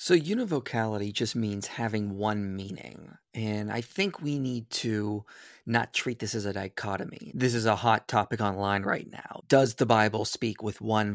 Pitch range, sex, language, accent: 105-140 Hz, male, English, American